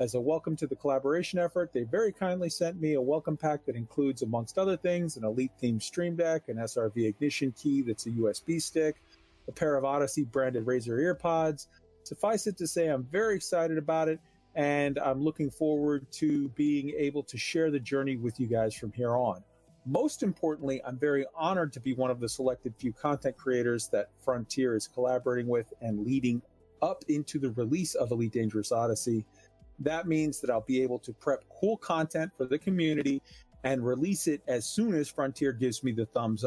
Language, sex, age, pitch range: English, male, 40-59, 125-160 Hz